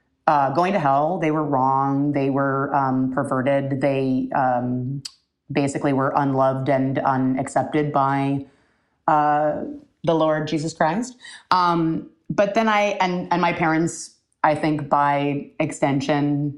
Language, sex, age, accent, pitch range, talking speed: English, female, 30-49, American, 135-175 Hz, 130 wpm